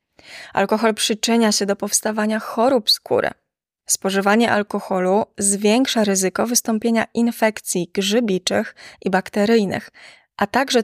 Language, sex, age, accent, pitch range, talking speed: Polish, female, 20-39, native, 200-230 Hz, 100 wpm